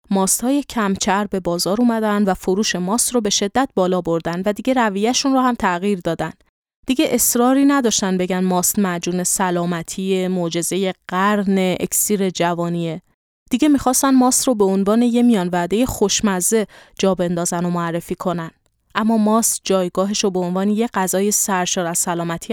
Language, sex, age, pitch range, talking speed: Persian, female, 20-39, 180-225 Hz, 155 wpm